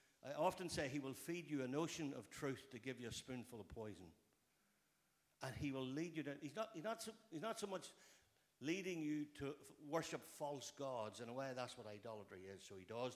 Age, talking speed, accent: 60-79, 230 wpm, Irish